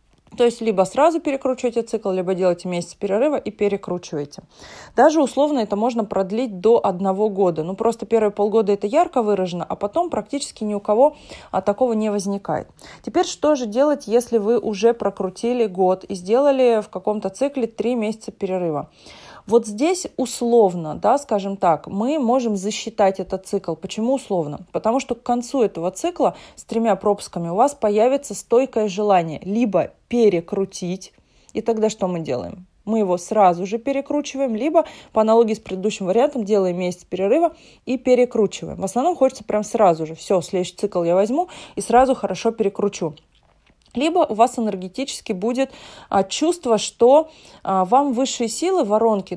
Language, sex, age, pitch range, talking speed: Russian, female, 30-49, 195-255 Hz, 155 wpm